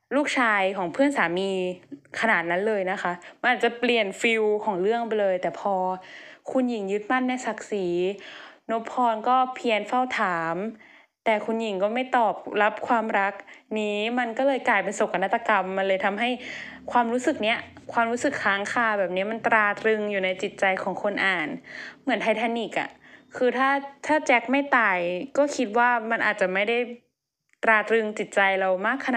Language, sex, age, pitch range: Thai, female, 10-29, 190-235 Hz